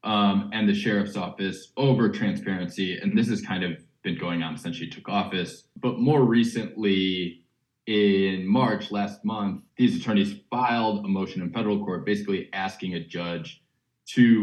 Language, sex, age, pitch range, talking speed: English, male, 20-39, 90-120 Hz, 160 wpm